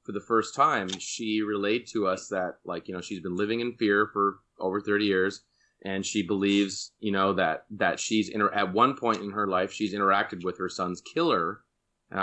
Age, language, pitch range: 30-49, Hebrew, 100-120 Hz